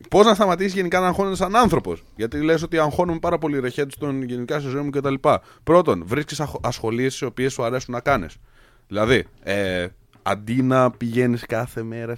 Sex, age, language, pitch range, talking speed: male, 20-39, Greek, 110-160 Hz, 190 wpm